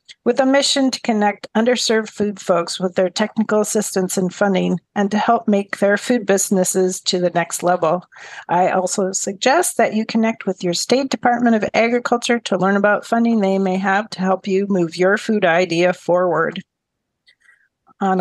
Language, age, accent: English, 40-59, American